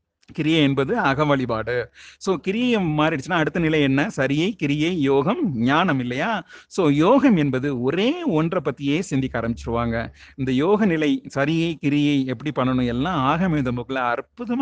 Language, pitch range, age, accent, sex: Tamil, 130-155 Hz, 30-49, native, male